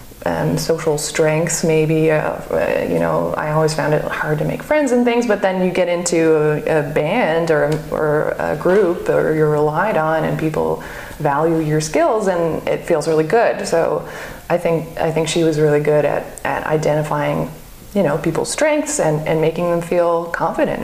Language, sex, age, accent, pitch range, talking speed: English, female, 20-39, American, 150-165 Hz, 190 wpm